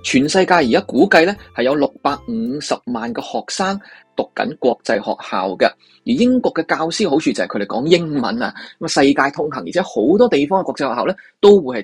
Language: Chinese